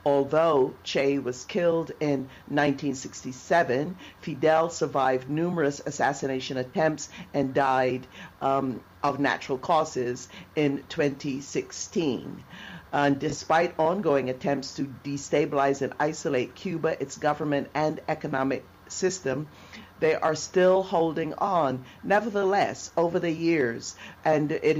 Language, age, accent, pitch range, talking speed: English, 50-69, American, 135-160 Hz, 105 wpm